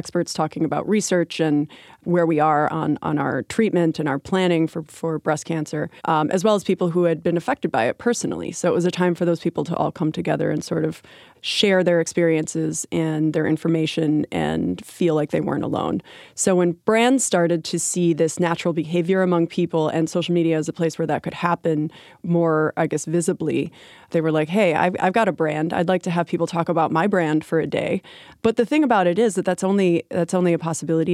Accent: American